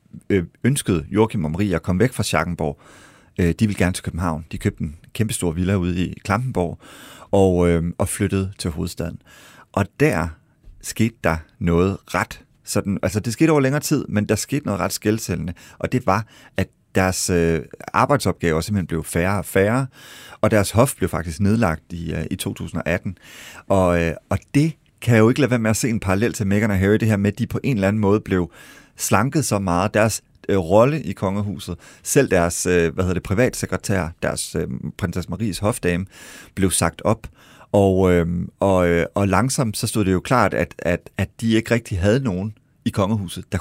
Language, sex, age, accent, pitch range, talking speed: Danish, male, 30-49, native, 90-115 Hz, 195 wpm